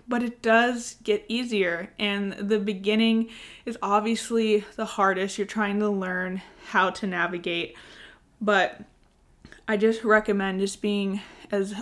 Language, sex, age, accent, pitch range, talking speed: English, female, 20-39, American, 195-220 Hz, 130 wpm